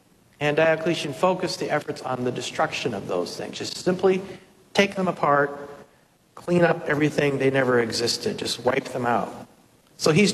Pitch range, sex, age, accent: 140-175 Hz, male, 50-69, American